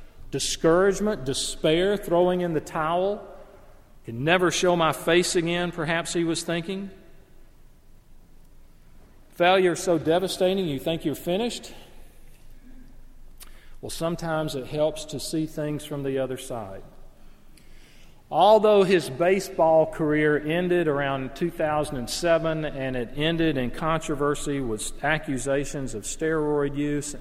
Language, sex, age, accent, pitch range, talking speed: English, male, 40-59, American, 130-165 Hz, 110 wpm